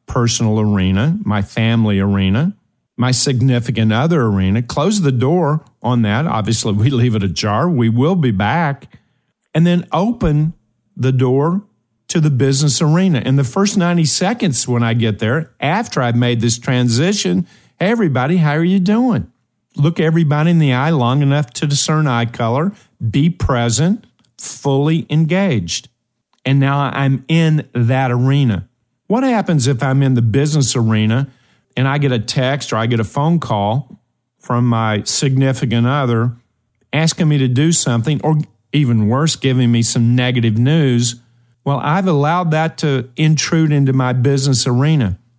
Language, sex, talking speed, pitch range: English, male, 155 wpm, 120-155 Hz